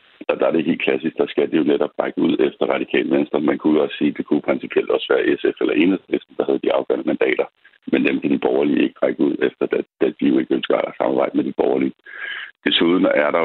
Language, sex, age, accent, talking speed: Danish, male, 60-79, native, 255 wpm